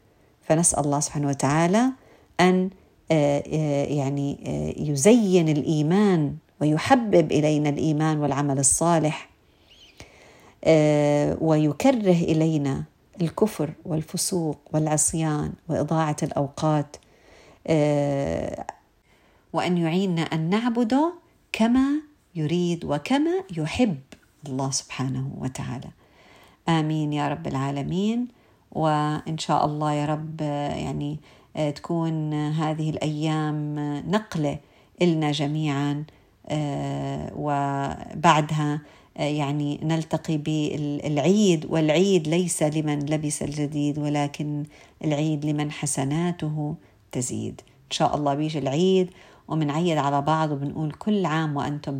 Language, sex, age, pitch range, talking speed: Arabic, female, 50-69, 145-165 Hz, 85 wpm